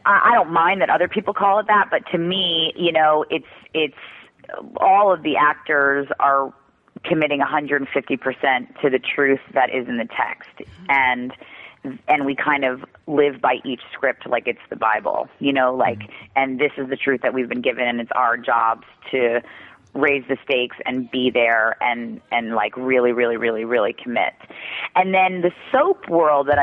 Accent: American